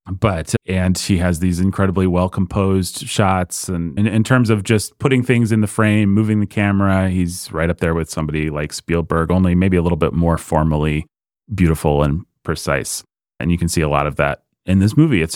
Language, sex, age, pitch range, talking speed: English, male, 30-49, 85-115 Hz, 205 wpm